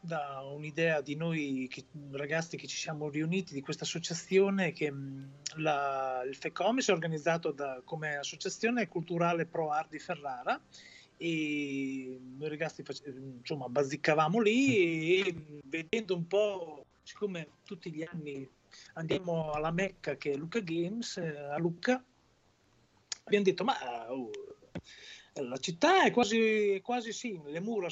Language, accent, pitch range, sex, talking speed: Italian, native, 150-215 Hz, male, 140 wpm